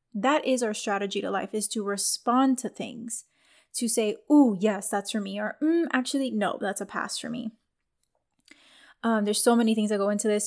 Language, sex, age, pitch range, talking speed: English, female, 10-29, 205-260 Hz, 205 wpm